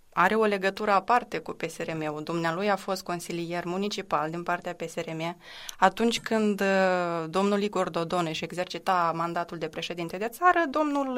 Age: 20-39